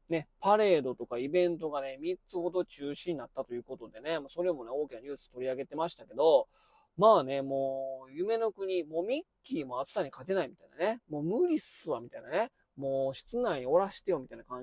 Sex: male